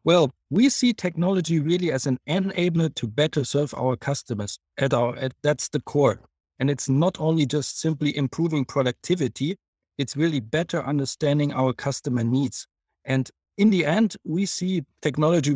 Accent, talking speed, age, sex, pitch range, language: German, 145 wpm, 50-69, male, 135-165 Hz, English